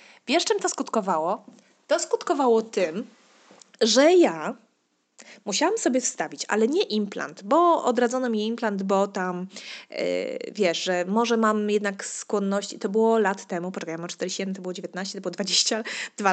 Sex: female